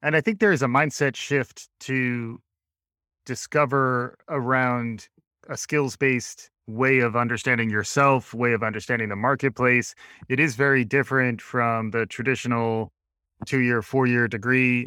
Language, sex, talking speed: English, male, 130 wpm